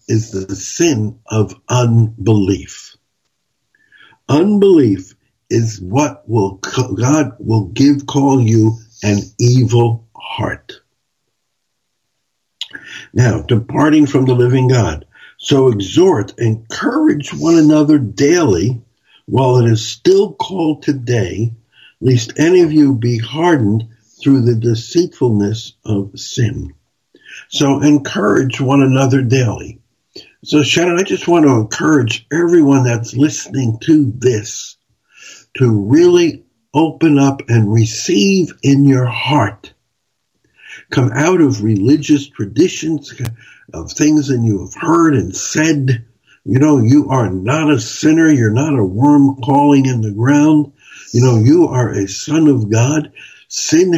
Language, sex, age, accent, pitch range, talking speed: English, male, 60-79, American, 115-150 Hz, 120 wpm